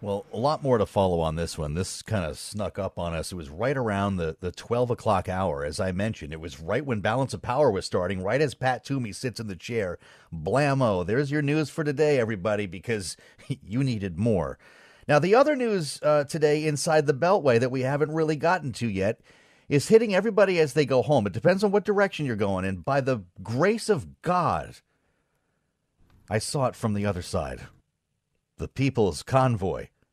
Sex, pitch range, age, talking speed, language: male, 95-140 Hz, 40-59, 205 wpm, English